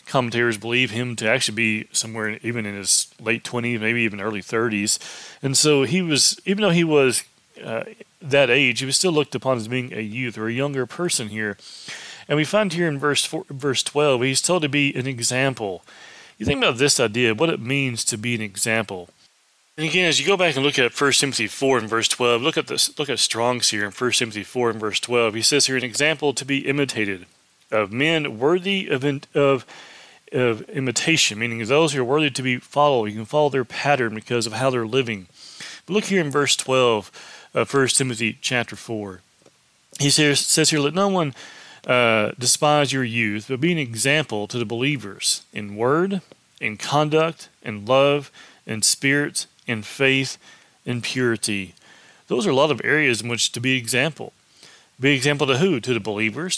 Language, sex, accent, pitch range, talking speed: English, male, American, 115-145 Hz, 205 wpm